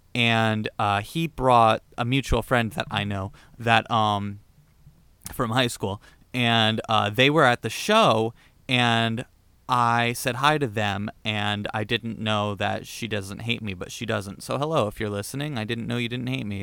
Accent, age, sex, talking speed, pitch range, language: American, 20-39, male, 190 wpm, 110-130 Hz, English